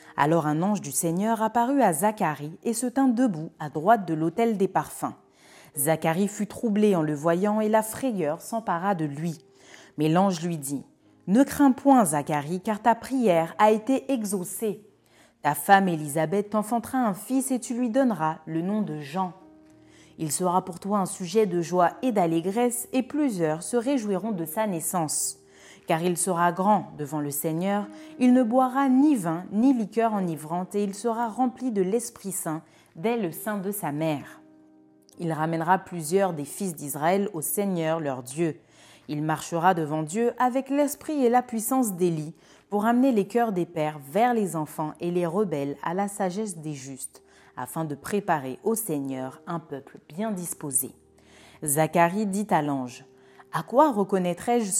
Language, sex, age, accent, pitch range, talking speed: French, female, 30-49, French, 155-225 Hz, 170 wpm